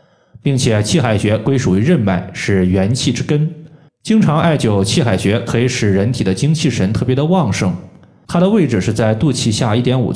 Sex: male